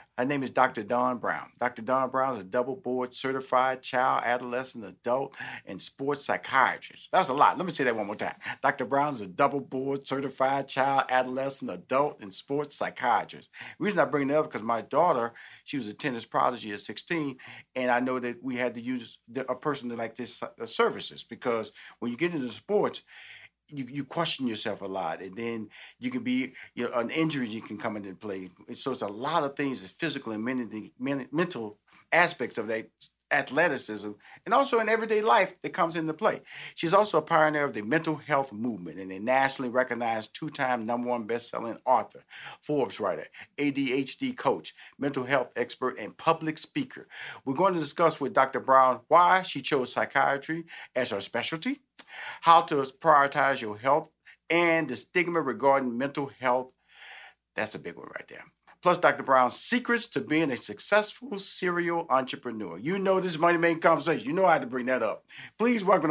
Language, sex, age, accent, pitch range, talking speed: English, male, 40-59, American, 125-165 Hz, 190 wpm